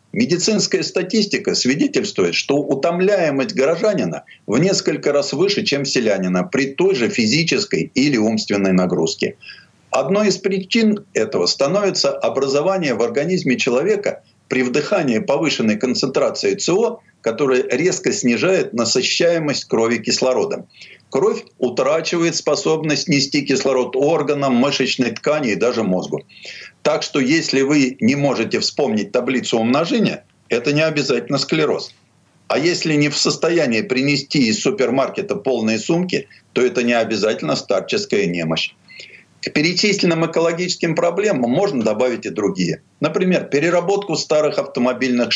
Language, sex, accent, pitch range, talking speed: Russian, male, native, 125-180 Hz, 120 wpm